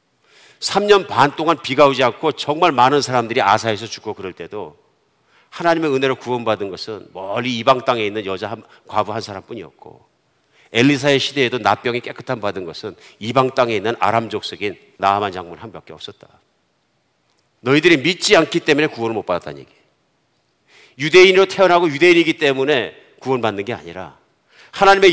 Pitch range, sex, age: 115-180 Hz, male, 50-69